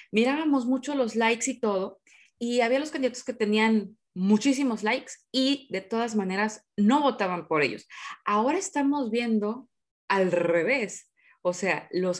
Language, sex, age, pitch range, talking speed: Spanish, female, 30-49, 190-245 Hz, 150 wpm